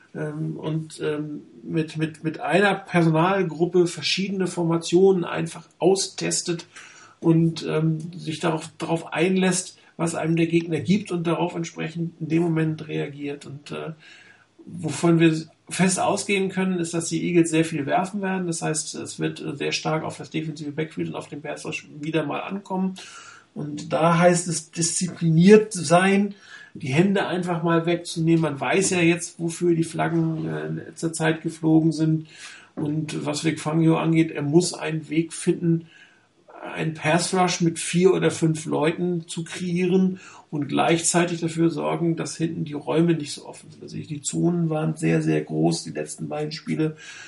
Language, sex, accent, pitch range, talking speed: German, male, German, 155-175 Hz, 155 wpm